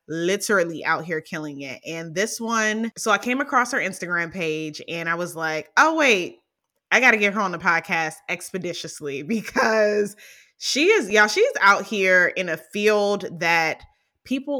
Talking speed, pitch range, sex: 175 wpm, 160-215 Hz, female